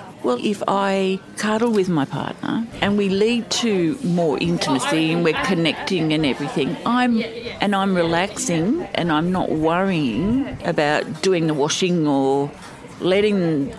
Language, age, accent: English, 50-69, Australian